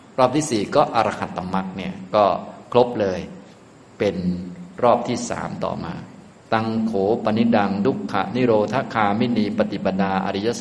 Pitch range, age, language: 90-110 Hz, 20-39, Thai